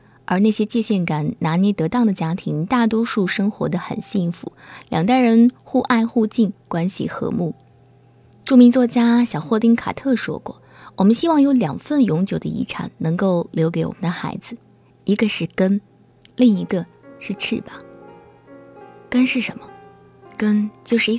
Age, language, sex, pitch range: 20-39, Chinese, female, 165-225 Hz